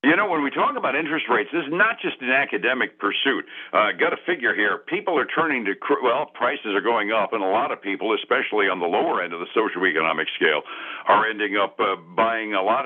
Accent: American